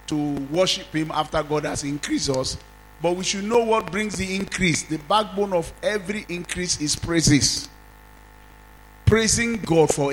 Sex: male